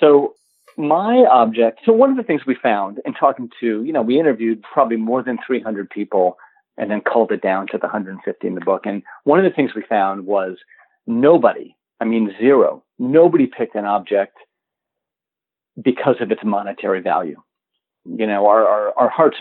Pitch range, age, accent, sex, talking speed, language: 105-135 Hz, 40-59, American, male, 185 wpm, English